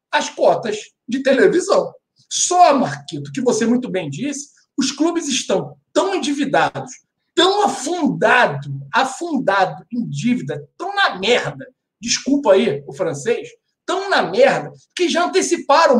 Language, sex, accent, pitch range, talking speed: Portuguese, male, Brazilian, 235-335 Hz, 130 wpm